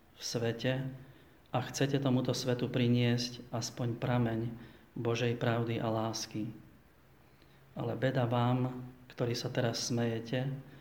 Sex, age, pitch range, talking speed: male, 40-59, 115-125 Hz, 110 wpm